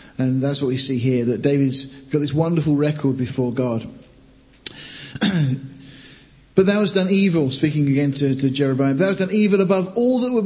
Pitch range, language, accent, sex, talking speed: 135-155 Hz, English, British, male, 185 wpm